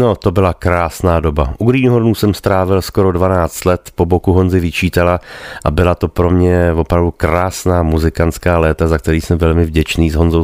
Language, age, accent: Czech, 30-49, native